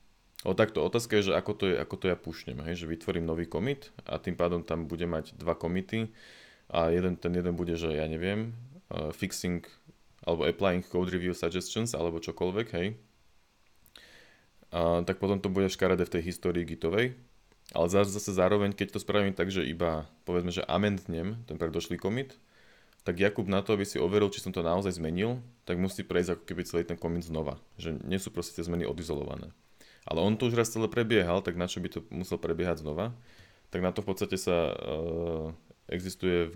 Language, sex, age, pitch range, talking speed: Slovak, male, 20-39, 85-100 Hz, 190 wpm